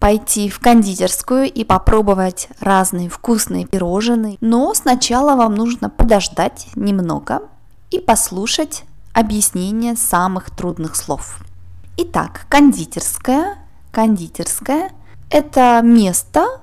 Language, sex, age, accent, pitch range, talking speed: Russian, female, 20-39, native, 195-250 Hz, 90 wpm